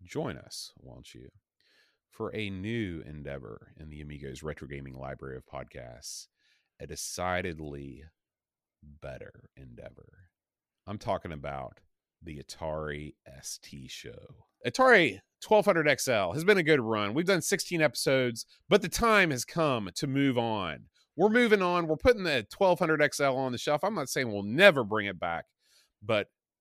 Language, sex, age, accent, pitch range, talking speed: English, male, 30-49, American, 90-140 Hz, 145 wpm